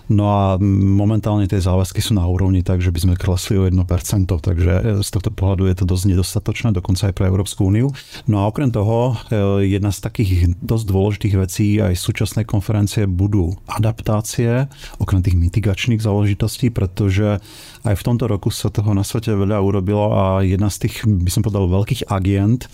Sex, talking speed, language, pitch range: male, 175 wpm, Slovak, 95-110 Hz